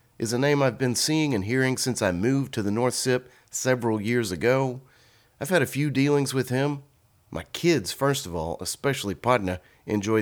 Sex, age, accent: male, 30-49, American